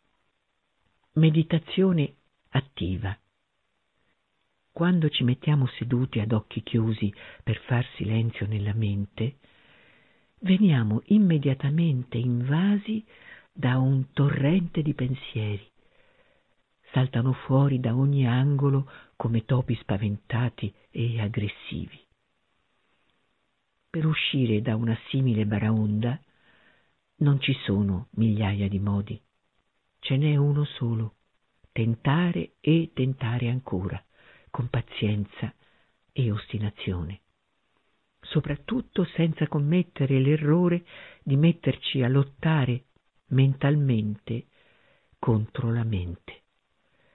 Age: 50-69